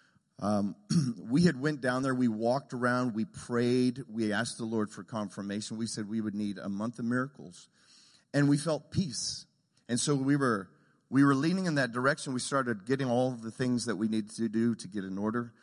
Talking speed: 215 wpm